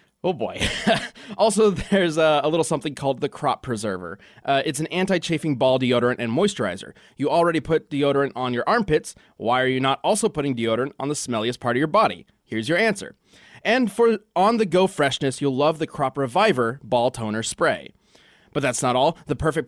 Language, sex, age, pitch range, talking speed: English, male, 20-39, 125-180 Hz, 195 wpm